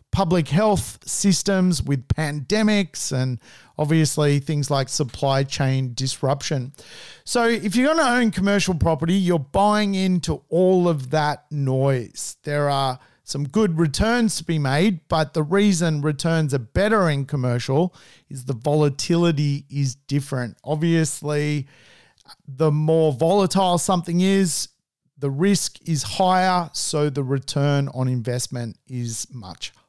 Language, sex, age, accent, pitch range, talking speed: English, male, 40-59, Australian, 140-175 Hz, 130 wpm